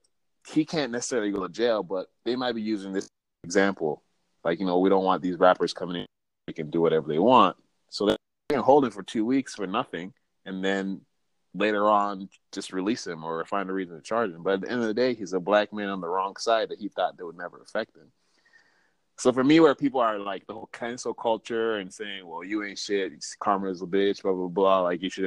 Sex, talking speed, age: male, 245 wpm, 20-39